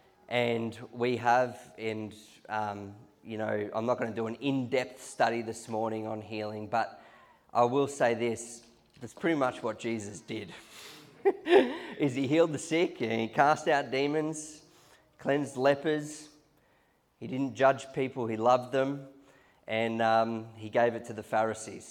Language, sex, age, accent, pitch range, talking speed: English, male, 20-39, Australian, 115-135 Hz, 155 wpm